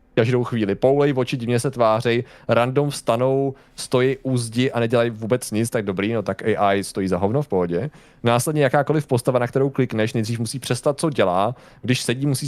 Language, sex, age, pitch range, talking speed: Czech, male, 30-49, 115-140 Hz, 190 wpm